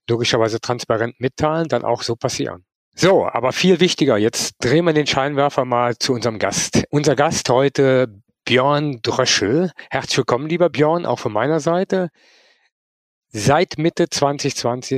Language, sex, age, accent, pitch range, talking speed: German, male, 50-69, German, 115-155 Hz, 145 wpm